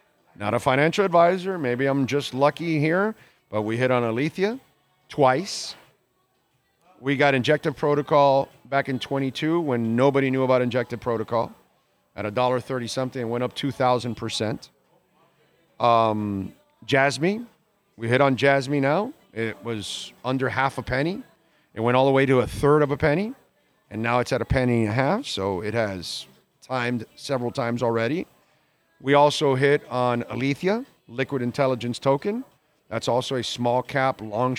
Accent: American